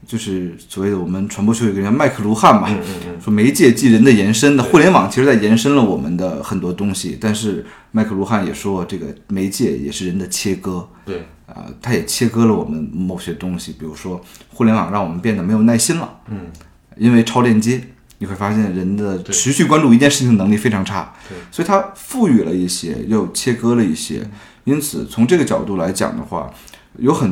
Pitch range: 100-140 Hz